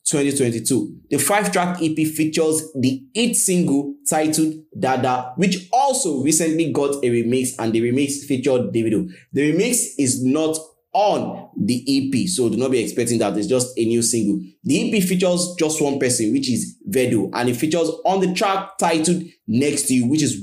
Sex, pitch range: male, 130-170 Hz